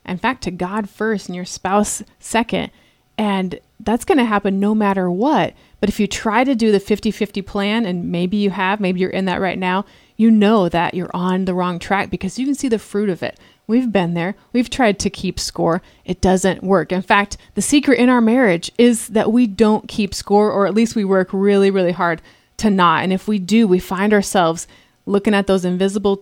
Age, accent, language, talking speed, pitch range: 30-49, American, English, 220 wpm, 180-215 Hz